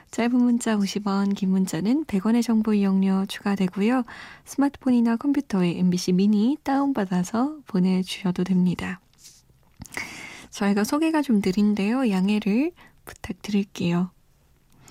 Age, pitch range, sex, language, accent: 20-39, 200-250 Hz, female, Korean, native